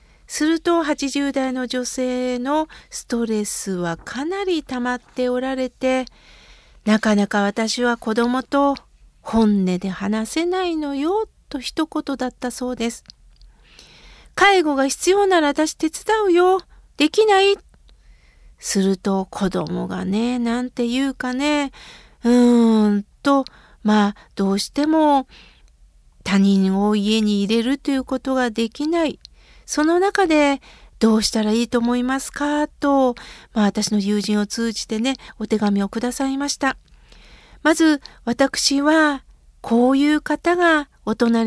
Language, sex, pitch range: Japanese, female, 225-295 Hz